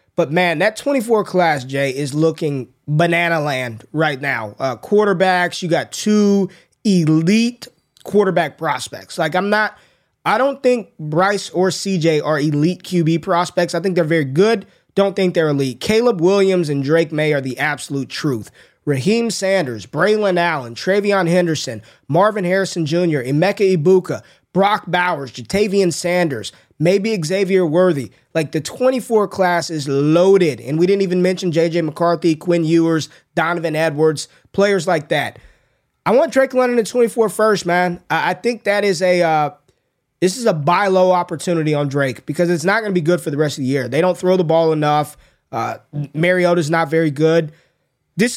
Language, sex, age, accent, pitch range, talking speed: English, male, 20-39, American, 155-195 Hz, 165 wpm